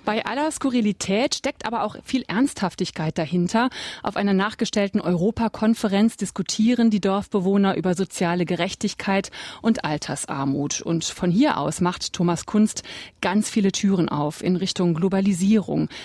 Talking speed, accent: 130 wpm, German